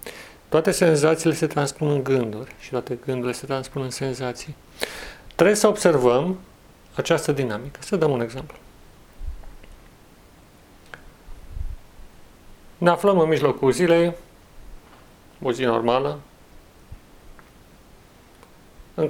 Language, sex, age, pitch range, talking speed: Romanian, male, 40-59, 125-155 Hz, 95 wpm